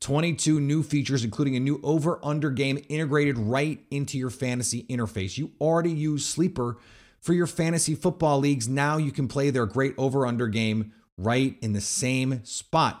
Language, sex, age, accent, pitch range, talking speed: English, male, 30-49, American, 120-165 Hz, 165 wpm